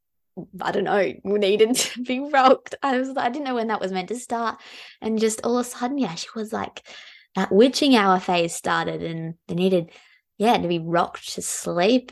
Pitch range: 175-220 Hz